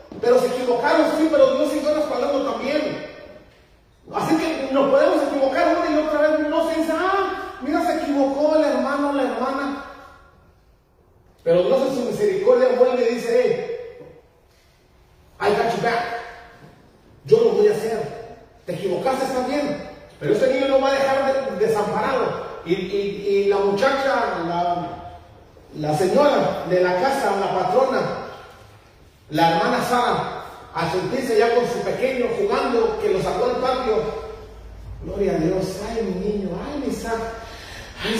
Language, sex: Spanish, male